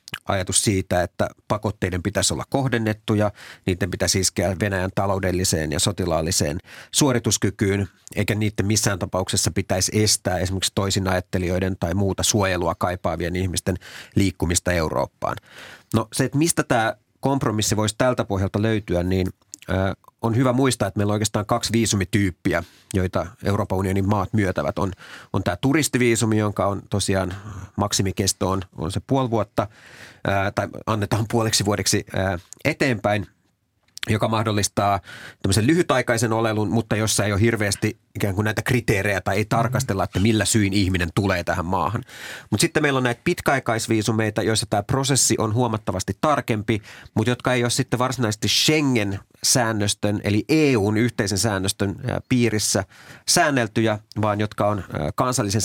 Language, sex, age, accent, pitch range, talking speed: Finnish, male, 30-49, native, 95-115 Hz, 135 wpm